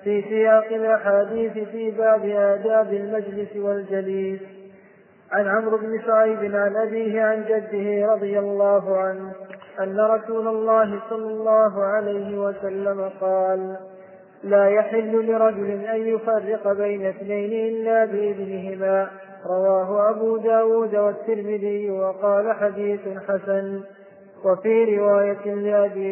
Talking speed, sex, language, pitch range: 105 wpm, male, Arabic, 195-220 Hz